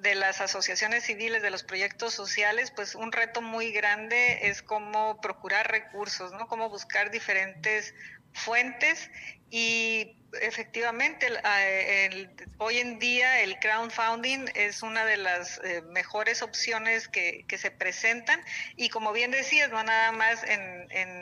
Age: 40-59